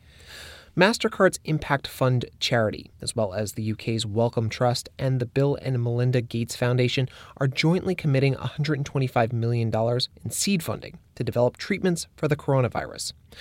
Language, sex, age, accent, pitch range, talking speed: English, male, 30-49, American, 110-140 Hz, 145 wpm